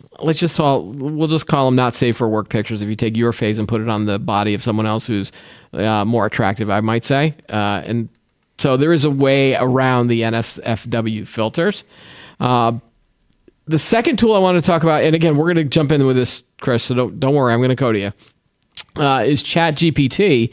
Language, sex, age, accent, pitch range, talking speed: English, male, 40-59, American, 120-155 Hz, 220 wpm